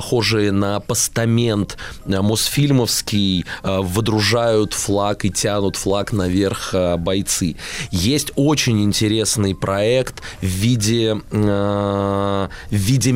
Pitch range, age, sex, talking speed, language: 95-125 Hz, 20-39, male, 80 wpm, Russian